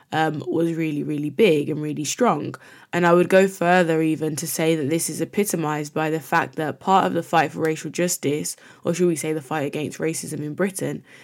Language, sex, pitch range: English, female, 150-180 Hz